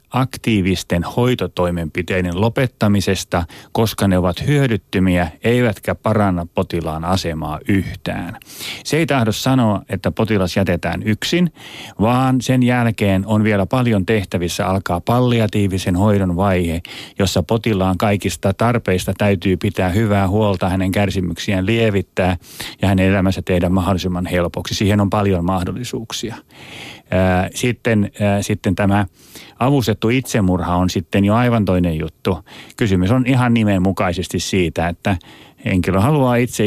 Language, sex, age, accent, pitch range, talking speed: Finnish, male, 30-49, native, 95-115 Hz, 120 wpm